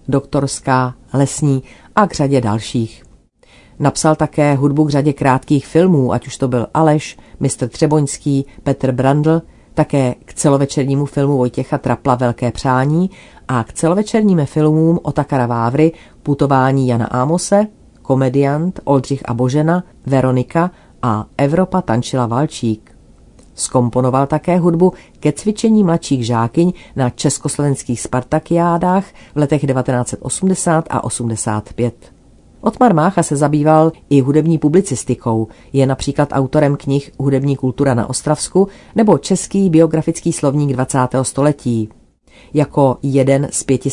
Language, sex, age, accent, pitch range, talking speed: Czech, female, 40-59, native, 130-155 Hz, 120 wpm